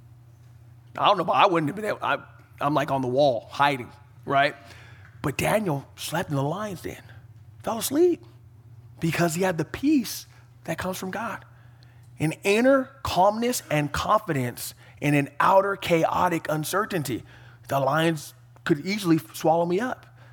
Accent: American